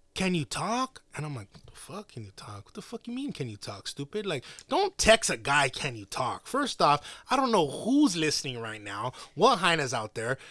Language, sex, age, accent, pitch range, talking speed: English, male, 20-39, American, 140-235 Hz, 240 wpm